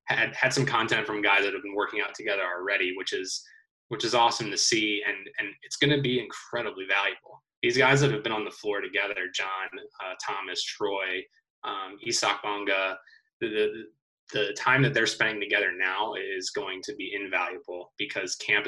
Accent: American